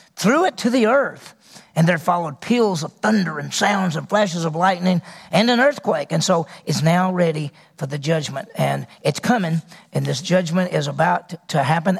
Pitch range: 175-200 Hz